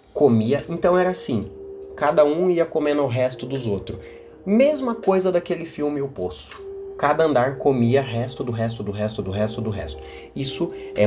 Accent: Brazilian